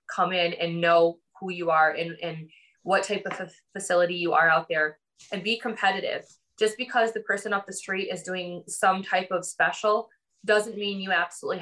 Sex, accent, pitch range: female, American, 170-200 Hz